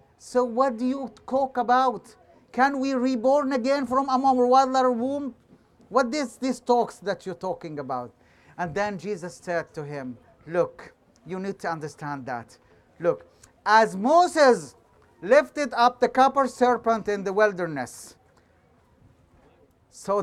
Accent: Israeli